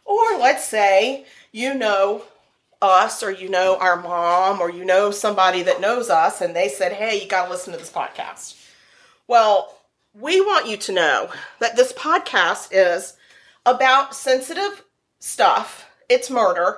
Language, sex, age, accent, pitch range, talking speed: English, female, 40-59, American, 185-230 Hz, 155 wpm